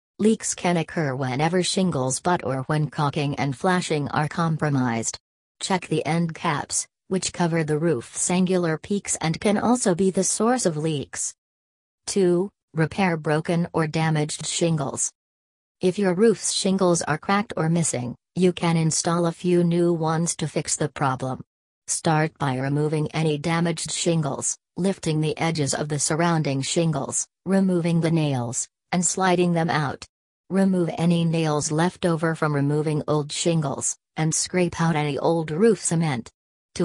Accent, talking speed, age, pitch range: American, 150 wpm, 40-59, 145-180 Hz